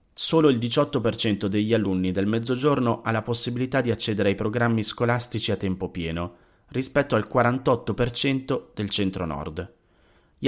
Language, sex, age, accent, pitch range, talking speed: Italian, male, 30-49, native, 95-120 Hz, 135 wpm